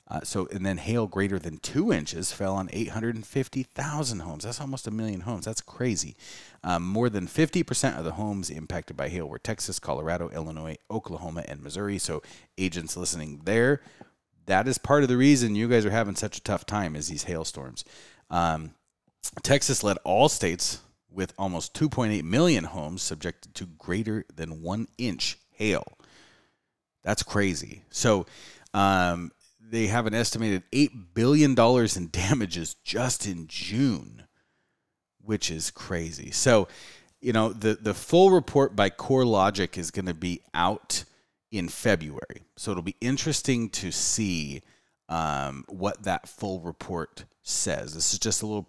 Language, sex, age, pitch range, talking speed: English, male, 30-49, 85-115 Hz, 160 wpm